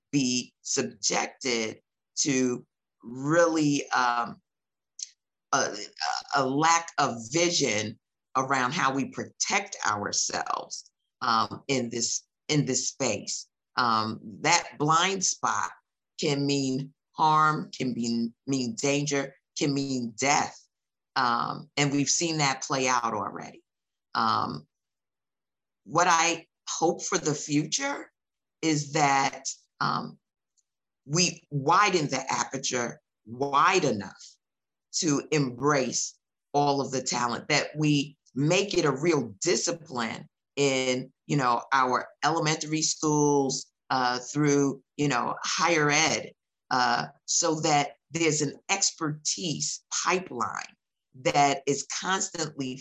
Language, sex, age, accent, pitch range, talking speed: English, female, 50-69, American, 130-155 Hz, 105 wpm